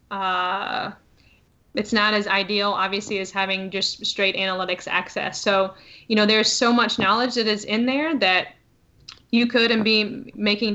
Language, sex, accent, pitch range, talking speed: English, female, American, 200-225 Hz, 160 wpm